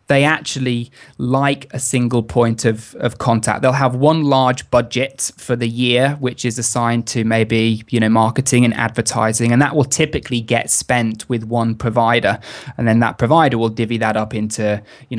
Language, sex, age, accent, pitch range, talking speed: English, male, 20-39, British, 115-130 Hz, 180 wpm